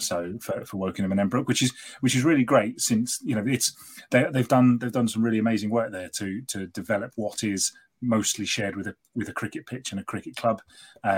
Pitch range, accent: 100-120 Hz, British